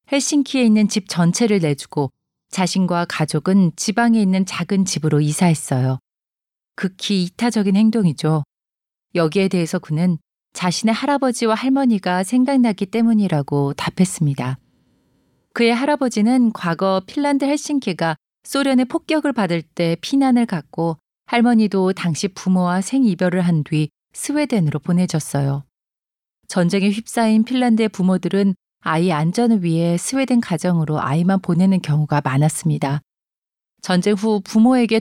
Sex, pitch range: female, 165-230 Hz